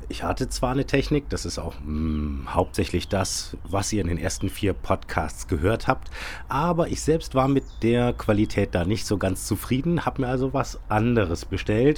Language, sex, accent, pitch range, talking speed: German, male, German, 85-125 Hz, 190 wpm